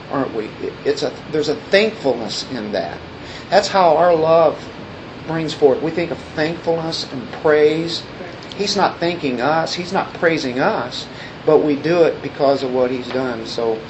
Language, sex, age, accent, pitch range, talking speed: English, male, 40-59, American, 135-185 Hz, 170 wpm